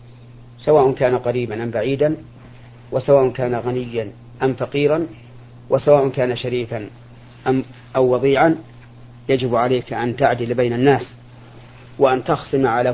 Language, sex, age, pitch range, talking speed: Arabic, male, 40-59, 120-135 Hz, 115 wpm